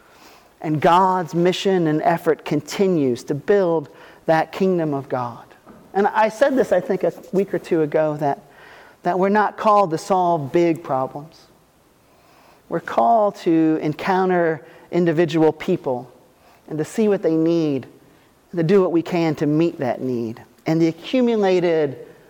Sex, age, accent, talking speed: male, 40-59, American, 155 wpm